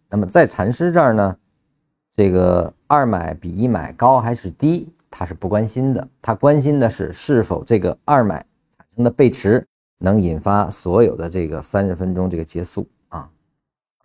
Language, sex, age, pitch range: Chinese, male, 50-69, 90-130 Hz